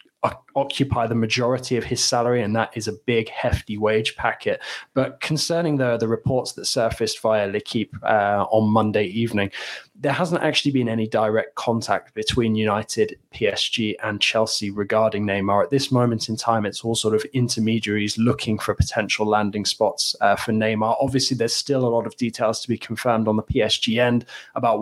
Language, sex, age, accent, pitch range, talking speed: English, male, 20-39, British, 110-125 Hz, 175 wpm